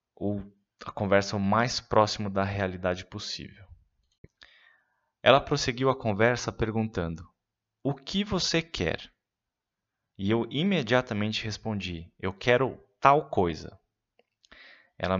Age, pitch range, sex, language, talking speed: 20-39, 95-125 Hz, male, Portuguese, 105 wpm